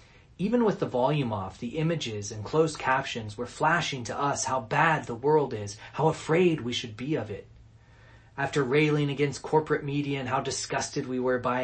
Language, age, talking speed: English, 30-49, 190 wpm